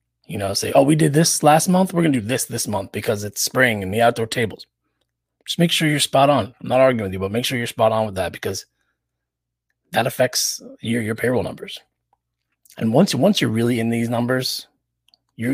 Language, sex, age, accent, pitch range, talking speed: English, male, 30-49, American, 90-120 Hz, 225 wpm